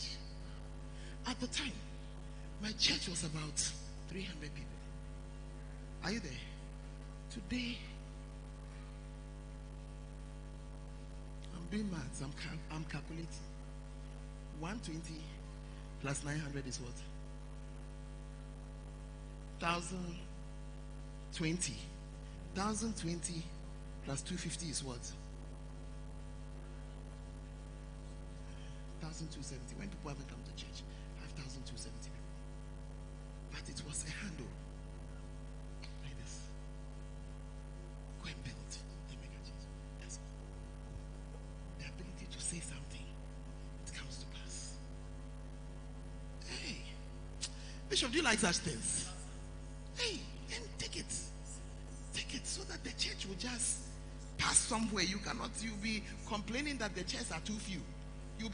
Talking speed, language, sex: 95 wpm, English, male